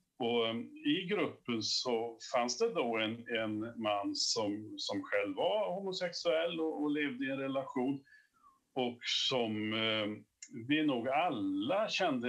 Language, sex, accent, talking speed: Swedish, male, Norwegian, 135 wpm